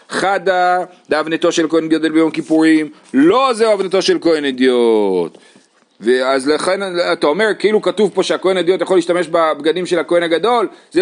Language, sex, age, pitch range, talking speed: Hebrew, male, 40-59, 135-200 Hz, 150 wpm